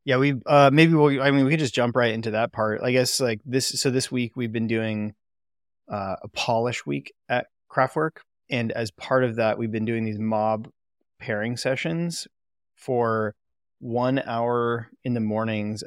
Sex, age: male, 20-39